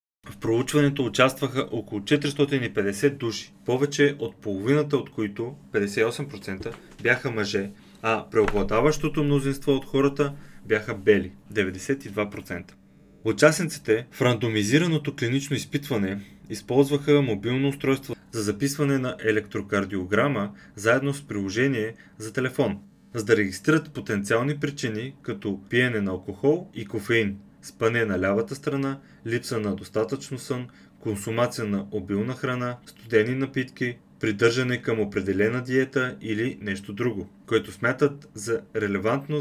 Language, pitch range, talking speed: Bulgarian, 105-135 Hz, 115 wpm